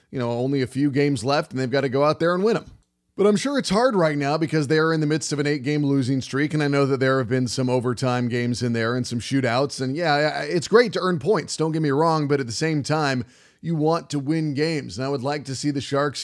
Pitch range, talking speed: 130-155 Hz, 290 wpm